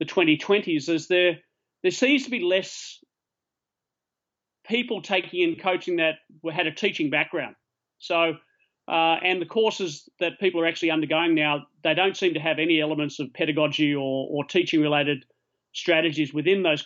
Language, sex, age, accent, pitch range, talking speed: English, male, 40-59, Australian, 150-185 Hz, 160 wpm